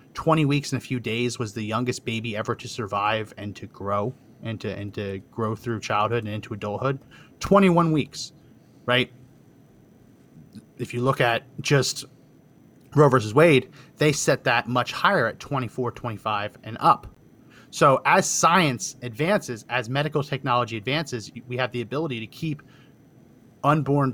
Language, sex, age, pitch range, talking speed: English, male, 30-49, 120-145 Hz, 150 wpm